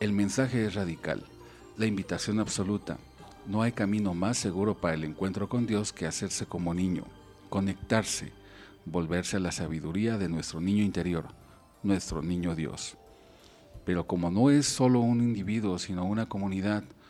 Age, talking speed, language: 50-69, 150 wpm, Spanish